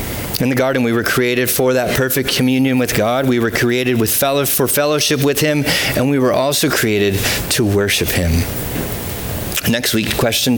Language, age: English, 30-49